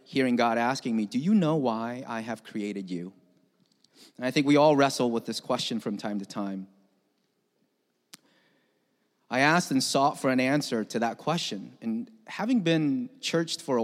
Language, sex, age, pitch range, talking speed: English, male, 30-49, 115-155 Hz, 180 wpm